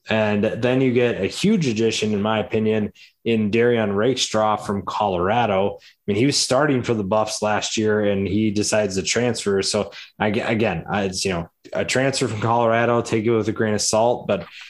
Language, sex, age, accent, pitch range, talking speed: English, male, 20-39, American, 100-115 Hz, 190 wpm